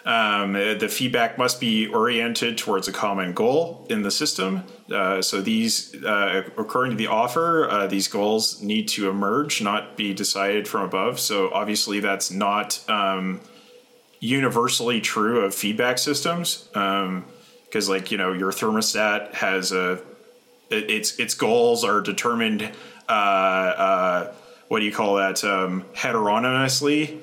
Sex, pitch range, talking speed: male, 95-135 Hz, 145 wpm